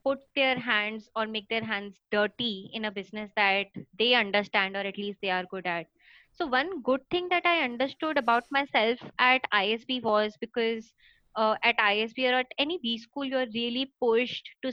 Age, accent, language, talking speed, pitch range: 20-39, Indian, English, 190 wpm, 215-255 Hz